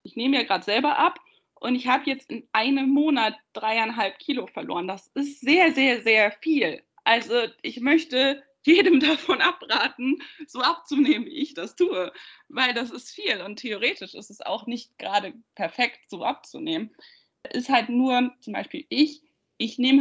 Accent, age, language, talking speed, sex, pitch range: German, 20-39, German, 170 wpm, female, 215-285 Hz